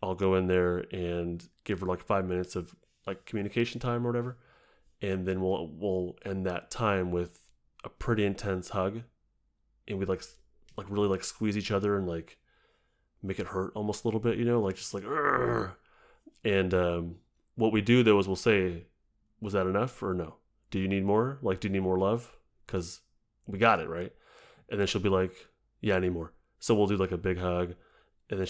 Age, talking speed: 30-49, 210 wpm